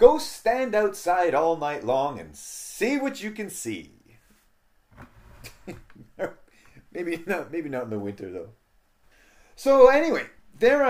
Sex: male